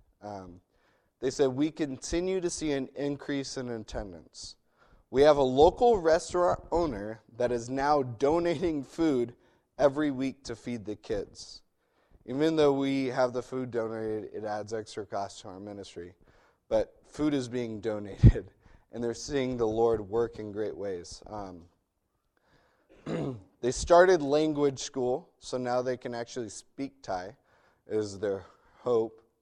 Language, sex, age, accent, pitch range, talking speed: English, male, 30-49, American, 105-145 Hz, 145 wpm